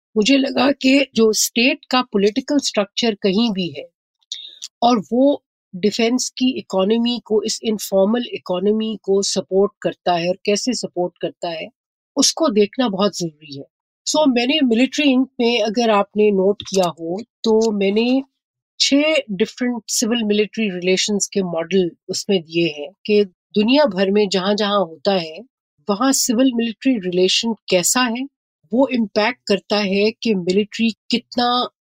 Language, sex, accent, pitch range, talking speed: Hindi, female, native, 190-245 Hz, 145 wpm